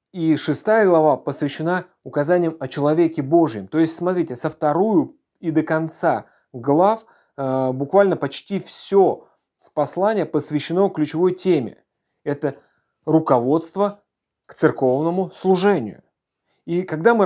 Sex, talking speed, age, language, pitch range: male, 115 wpm, 30-49, Russian, 145-185 Hz